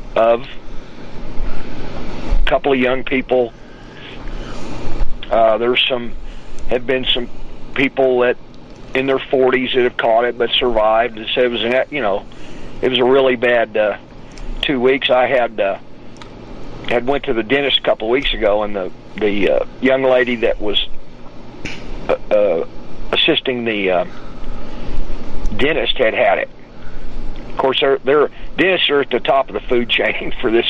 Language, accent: English, American